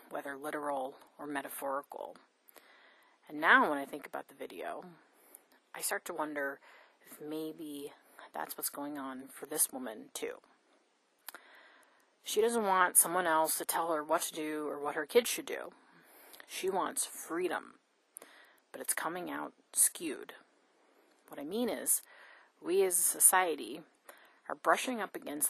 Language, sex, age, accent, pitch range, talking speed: English, female, 30-49, American, 150-230 Hz, 150 wpm